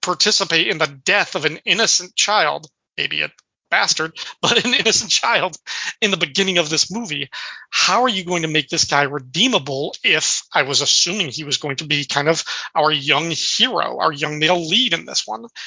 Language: English